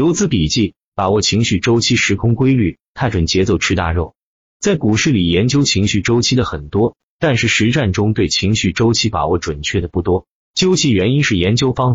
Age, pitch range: 30-49, 90-125 Hz